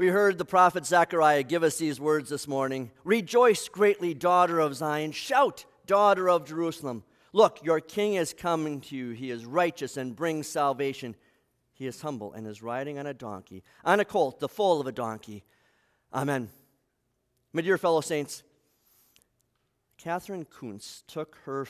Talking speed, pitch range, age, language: 165 wpm, 130-165 Hz, 50-69, English